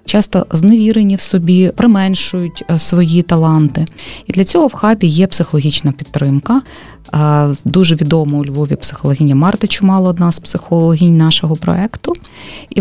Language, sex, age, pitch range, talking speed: Ukrainian, female, 30-49, 155-190 Hz, 130 wpm